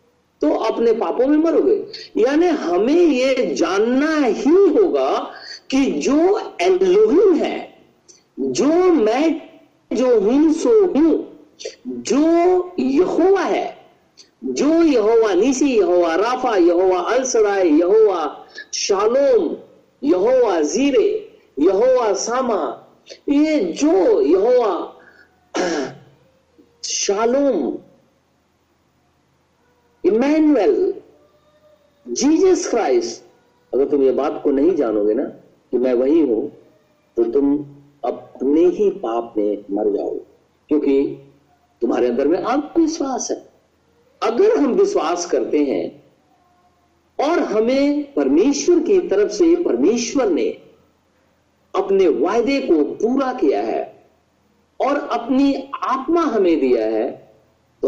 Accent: native